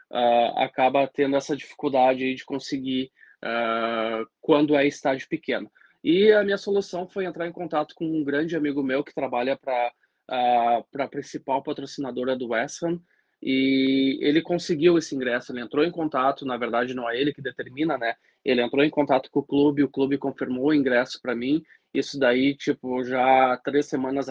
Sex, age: male, 20-39